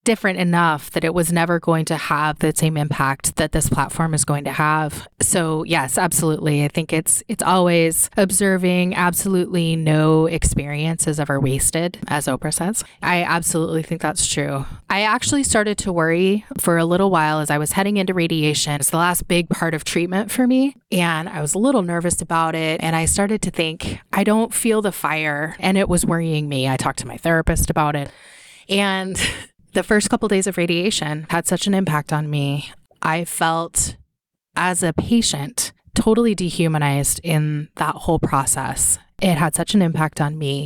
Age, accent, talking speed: 20-39, American, 185 wpm